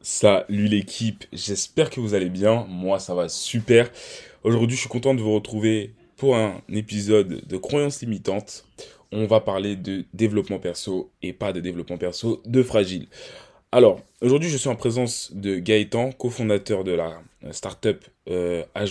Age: 20-39